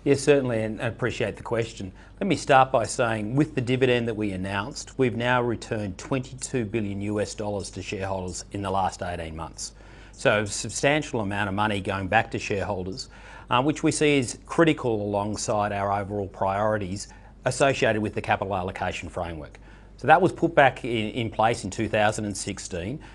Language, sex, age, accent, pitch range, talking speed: English, male, 40-59, Australian, 100-125 Hz, 175 wpm